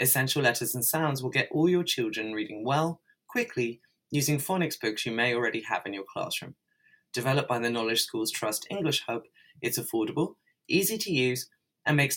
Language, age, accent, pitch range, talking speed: English, 20-39, British, 120-165 Hz, 180 wpm